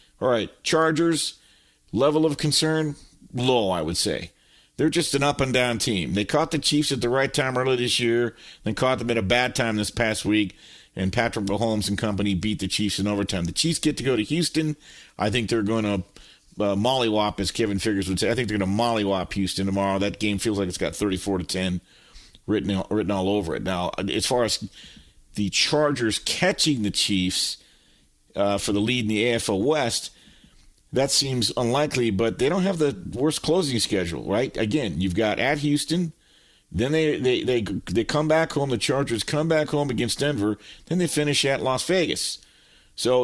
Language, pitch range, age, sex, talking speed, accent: English, 105-150 Hz, 50-69, male, 200 wpm, American